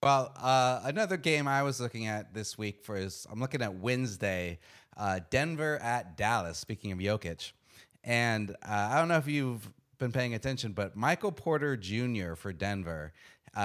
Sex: male